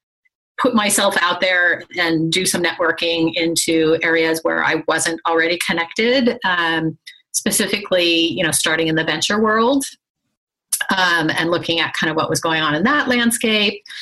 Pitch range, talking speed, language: 170-230 Hz, 160 wpm, English